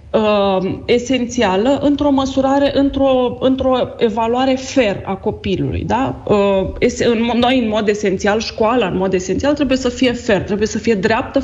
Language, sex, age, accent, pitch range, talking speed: Romanian, female, 30-49, native, 195-250 Hz, 135 wpm